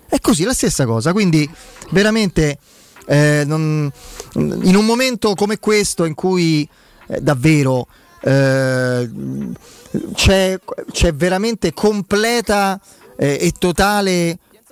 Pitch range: 140-190 Hz